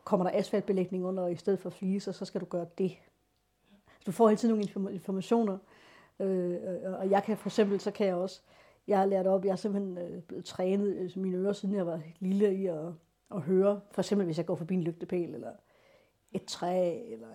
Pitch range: 175-200 Hz